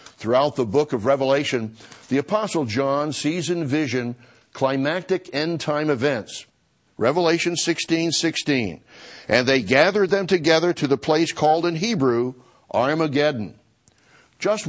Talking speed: 125 wpm